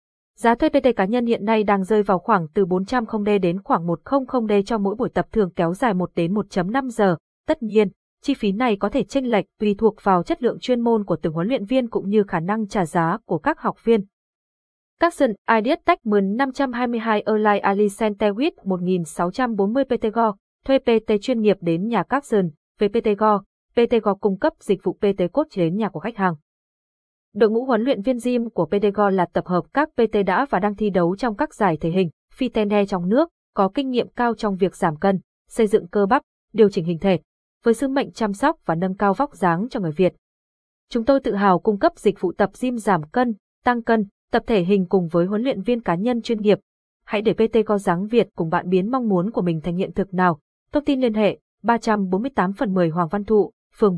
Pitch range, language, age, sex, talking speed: 185-235 Hz, Vietnamese, 20-39, female, 225 wpm